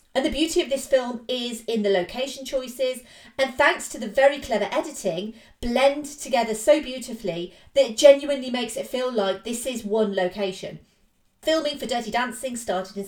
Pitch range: 210-275 Hz